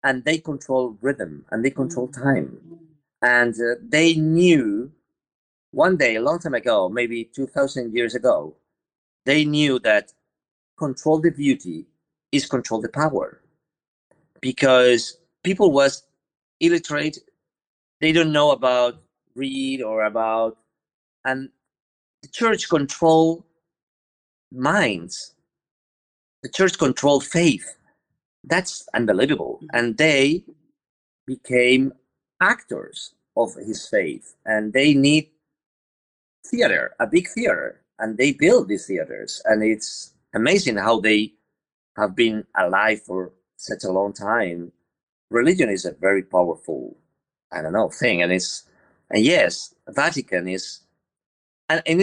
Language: English